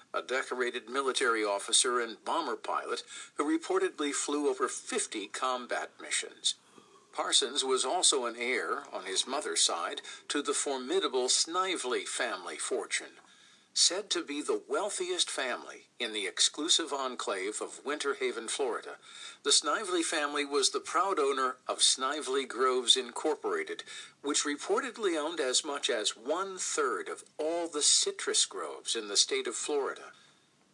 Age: 50-69